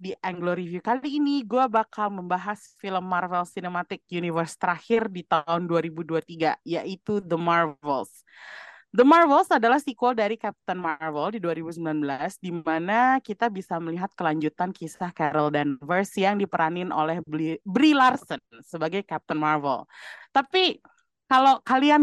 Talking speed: 130 wpm